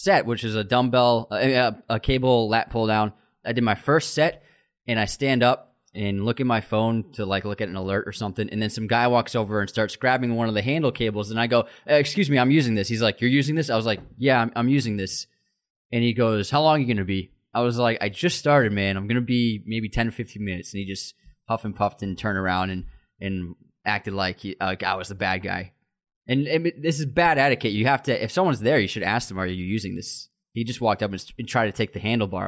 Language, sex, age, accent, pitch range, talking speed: English, male, 20-39, American, 105-135 Hz, 265 wpm